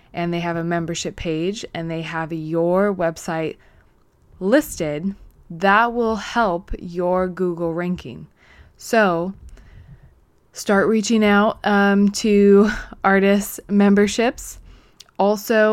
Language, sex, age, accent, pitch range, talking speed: English, female, 20-39, American, 175-210 Hz, 105 wpm